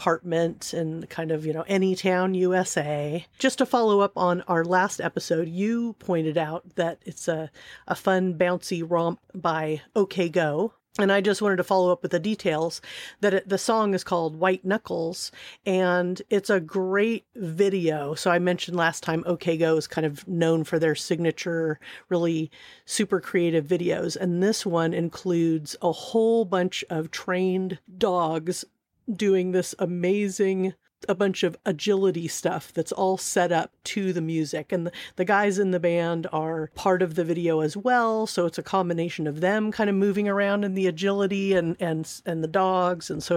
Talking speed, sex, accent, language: 180 wpm, female, American, English